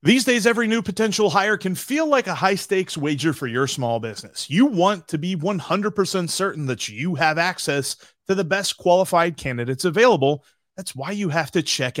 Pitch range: 135-195 Hz